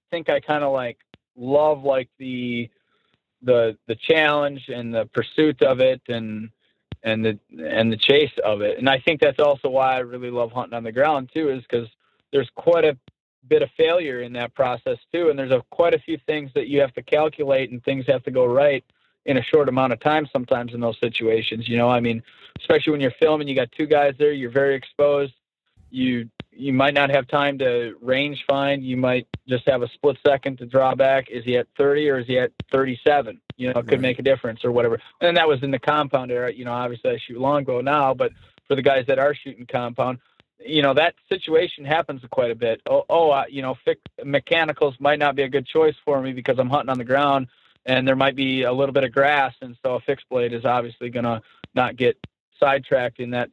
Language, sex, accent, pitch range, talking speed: English, male, American, 125-145 Hz, 230 wpm